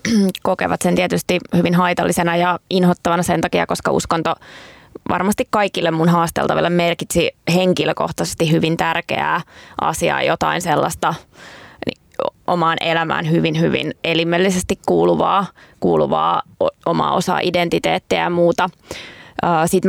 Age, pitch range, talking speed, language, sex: 20-39, 160-180 Hz, 105 wpm, Finnish, female